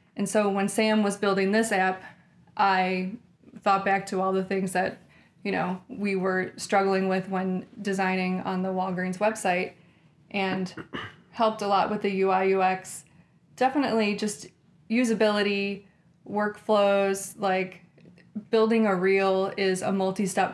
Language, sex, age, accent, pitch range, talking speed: English, female, 20-39, American, 185-200 Hz, 135 wpm